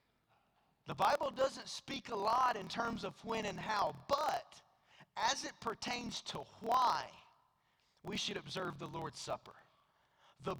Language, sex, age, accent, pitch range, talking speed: English, male, 30-49, American, 145-215 Hz, 140 wpm